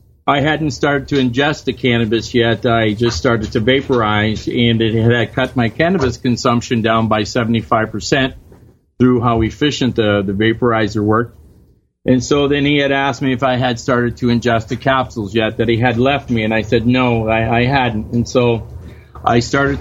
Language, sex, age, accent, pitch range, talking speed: English, male, 40-59, American, 115-135 Hz, 190 wpm